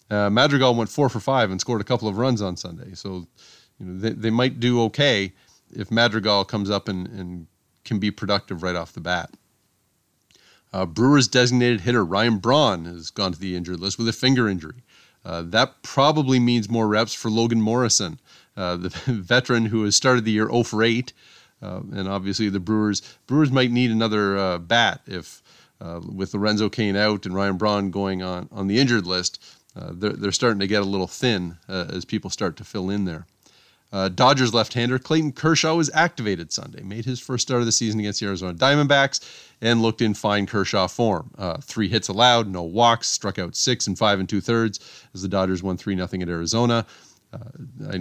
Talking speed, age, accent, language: 200 wpm, 30-49, American, English